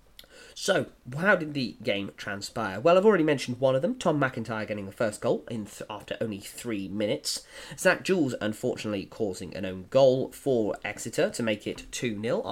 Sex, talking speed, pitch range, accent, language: male, 180 wpm, 110-170 Hz, British, English